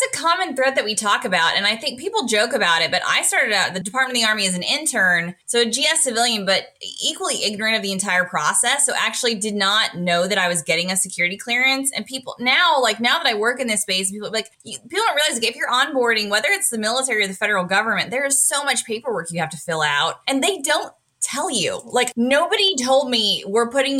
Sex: female